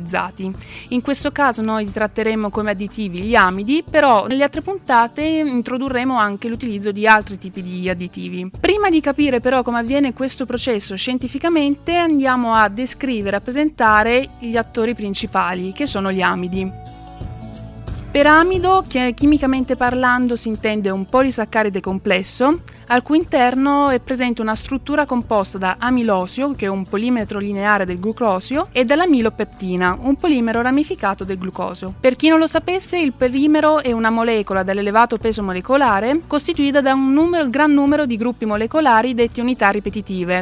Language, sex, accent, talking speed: Italian, female, native, 150 wpm